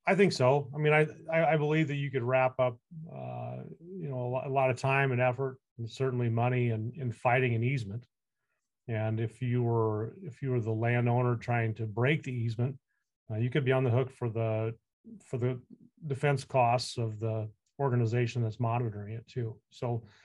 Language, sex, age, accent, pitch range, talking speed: English, male, 30-49, American, 115-135 Hz, 200 wpm